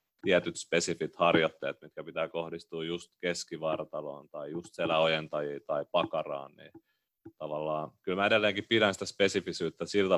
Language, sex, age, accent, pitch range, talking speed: Finnish, male, 30-49, native, 80-95 Hz, 130 wpm